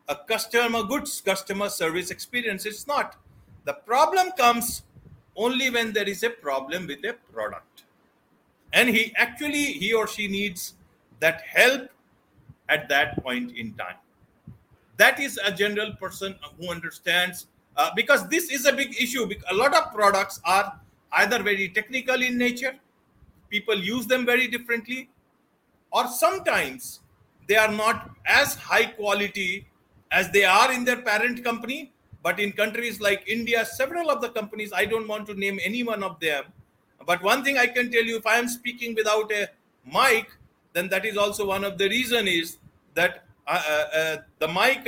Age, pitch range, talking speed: 50-69, 195-245 Hz, 165 wpm